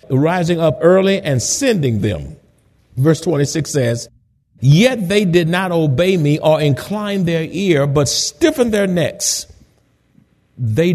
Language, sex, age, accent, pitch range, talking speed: English, male, 50-69, American, 135-205 Hz, 130 wpm